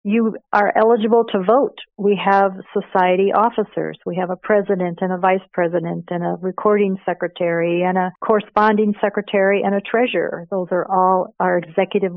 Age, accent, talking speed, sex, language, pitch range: 50-69, American, 165 wpm, female, English, 180-210 Hz